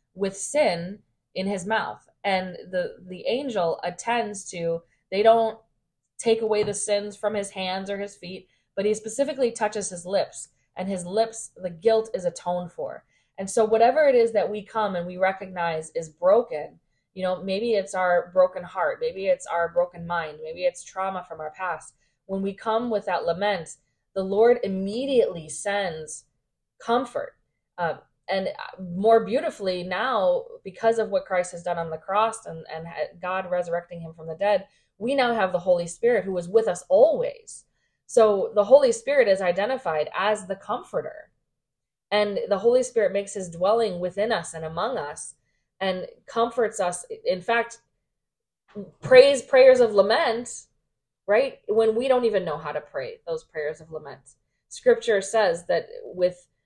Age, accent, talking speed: 20-39, American, 170 wpm